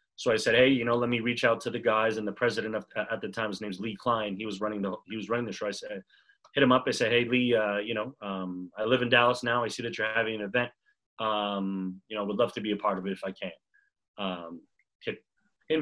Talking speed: 285 wpm